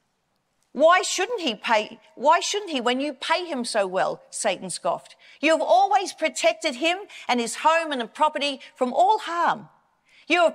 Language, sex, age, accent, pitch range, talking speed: English, female, 40-59, Australian, 225-310 Hz, 165 wpm